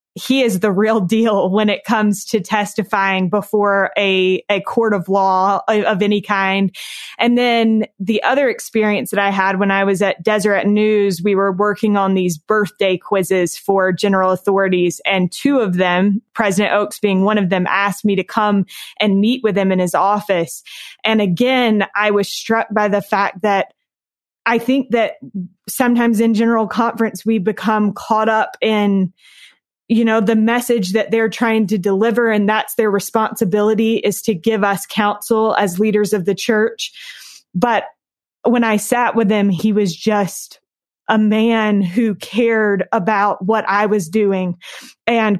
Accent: American